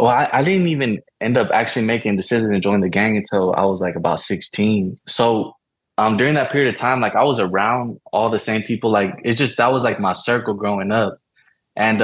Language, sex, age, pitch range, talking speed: English, male, 20-39, 100-120 Hz, 230 wpm